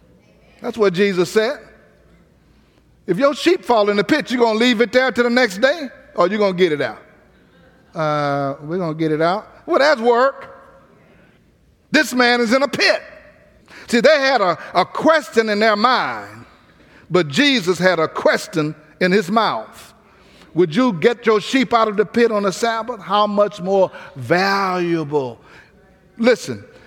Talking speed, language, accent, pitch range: 175 wpm, English, American, 190-250 Hz